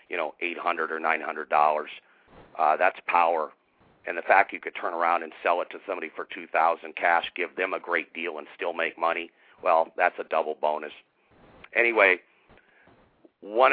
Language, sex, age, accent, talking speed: English, male, 50-69, American, 165 wpm